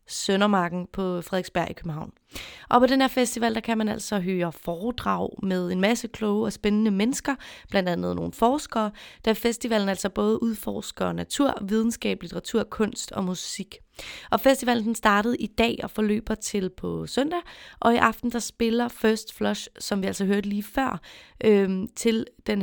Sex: female